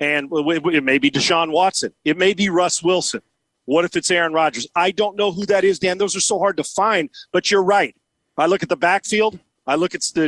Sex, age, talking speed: male, 40-59, 245 wpm